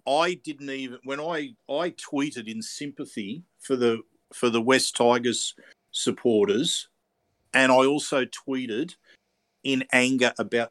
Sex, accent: male, Australian